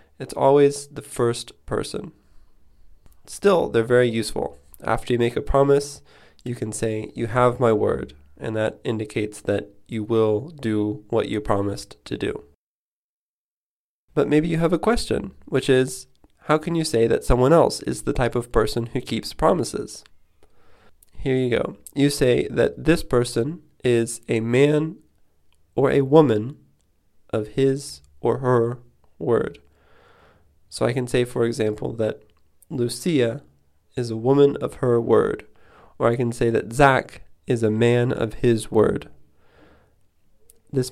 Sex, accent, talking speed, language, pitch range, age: male, American, 150 wpm, English, 105-135 Hz, 20-39